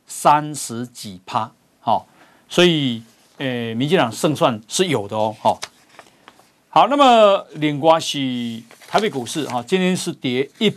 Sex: male